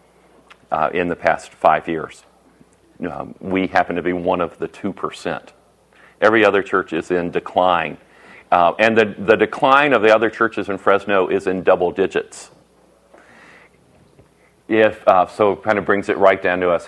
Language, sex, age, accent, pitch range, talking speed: English, male, 40-59, American, 90-110 Hz, 170 wpm